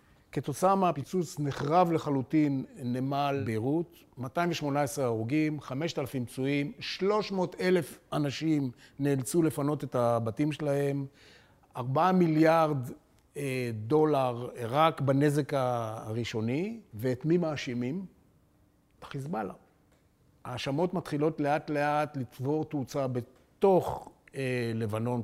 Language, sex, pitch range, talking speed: Hebrew, male, 125-170 Hz, 85 wpm